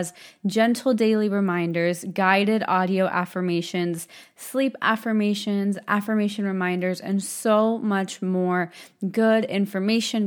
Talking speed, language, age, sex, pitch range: 95 wpm, English, 20-39, female, 180-215 Hz